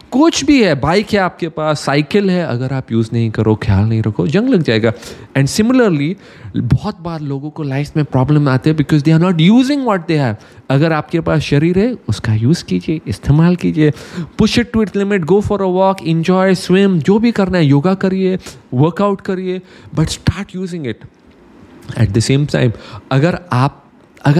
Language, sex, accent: English, male, Indian